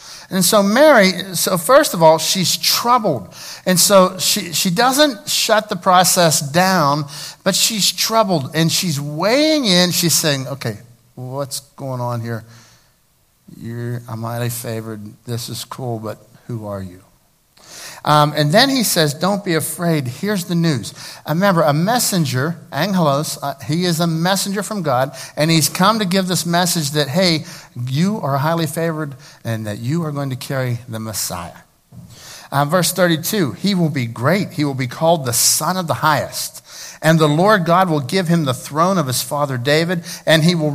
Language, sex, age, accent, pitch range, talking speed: English, male, 60-79, American, 130-185 Hz, 175 wpm